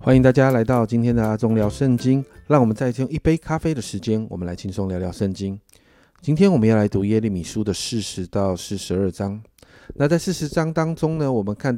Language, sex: Chinese, male